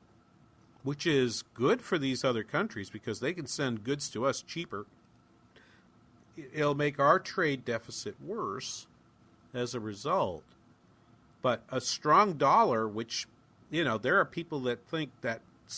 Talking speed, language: 140 wpm, English